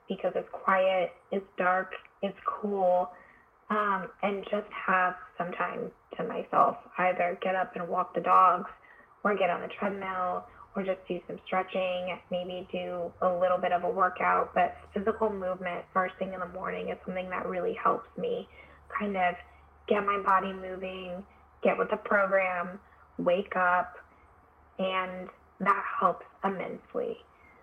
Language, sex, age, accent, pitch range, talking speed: English, female, 10-29, American, 185-200 Hz, 150 wpm